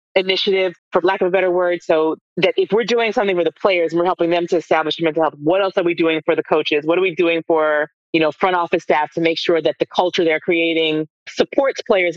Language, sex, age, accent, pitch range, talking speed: English, female, 30-49, American, 160-185 Hz, 255 wpm